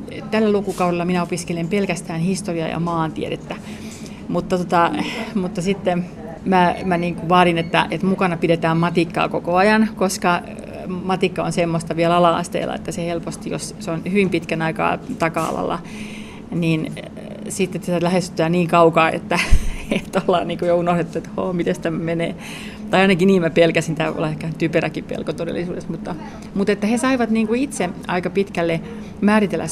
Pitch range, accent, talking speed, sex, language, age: 170-210 Hz, native, 155 wpm, female, Finnish, 30-49